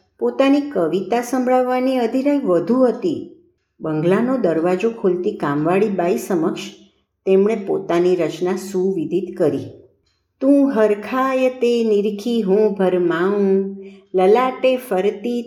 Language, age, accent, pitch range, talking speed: Gujarati, 60-79, native, 180-240 Hz, 85 wpm